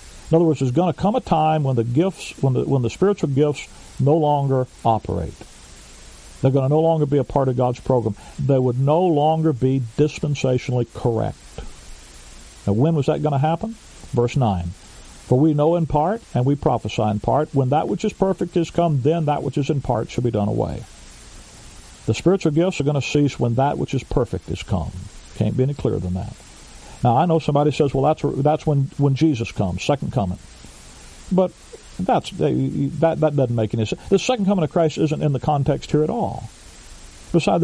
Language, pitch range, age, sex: English, 110-155 Hz, 50-69, male